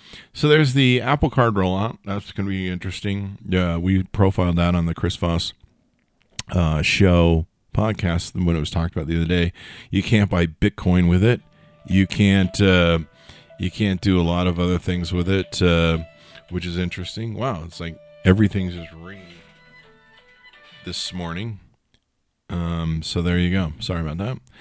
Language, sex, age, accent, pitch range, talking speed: English, male, 40-59, American, 85-100 Hz, 170 wpm